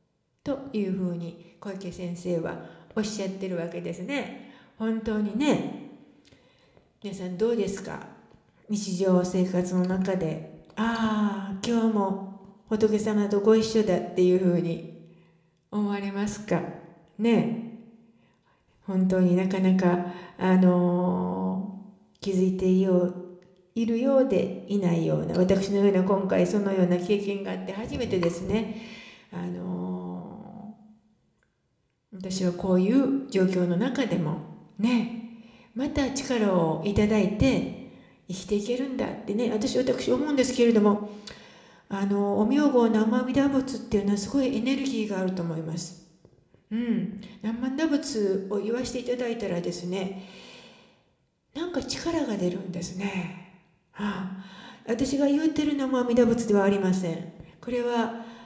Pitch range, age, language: 180-230 Hz, 60-79, English